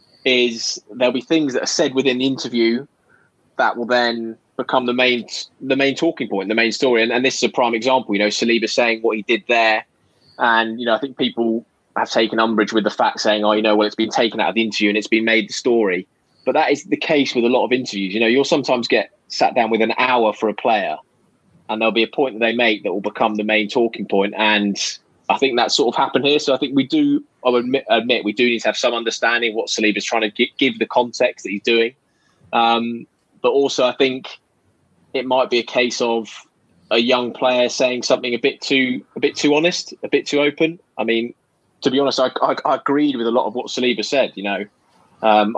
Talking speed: 250 wpm